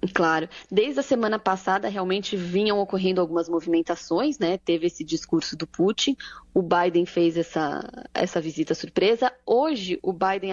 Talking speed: 150 wpm